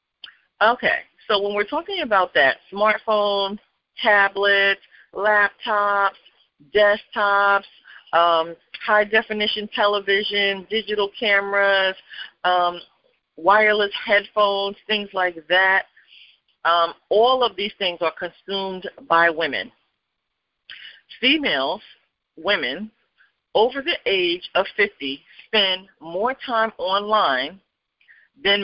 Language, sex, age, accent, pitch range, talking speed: English, female, 40-59, American, 180-210 Hz, 90 wpm